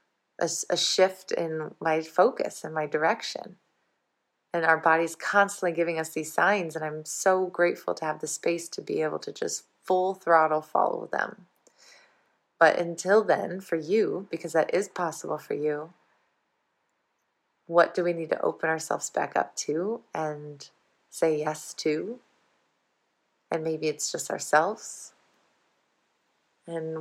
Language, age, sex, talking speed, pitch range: English, 20-39, female, 140 wpm, 155-180 Hz